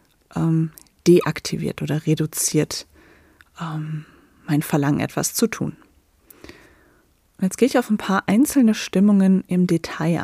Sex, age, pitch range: female, 30-49, 160-195 Hz